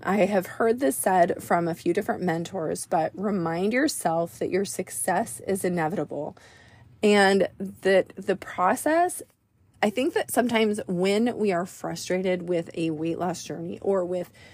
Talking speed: 155 wpm